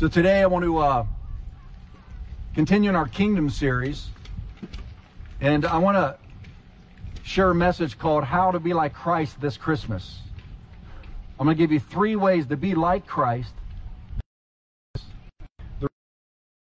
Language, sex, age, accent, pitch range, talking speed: English, male, 40-59, American, 100-155 Hz, 135 wpm